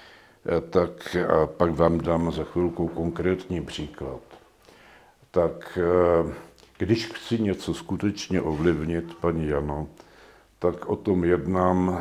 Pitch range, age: 85-95 Hz, 60-79